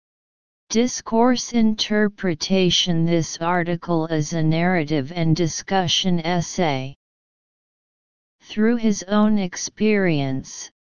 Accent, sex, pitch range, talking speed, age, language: American, female, 155-195 Hz, 75 wpm, 40-59, English